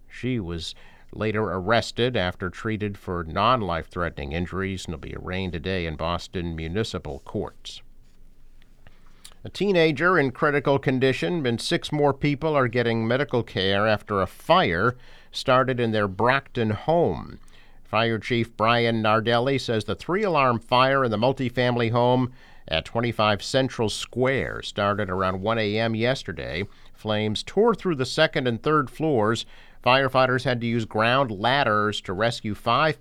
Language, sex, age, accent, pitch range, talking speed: English, male, 50-69, American, 95-125 Hz, 140 wpm